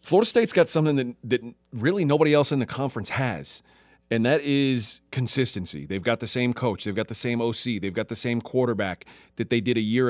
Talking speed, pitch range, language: 220 wpm, 110-135 Hz, English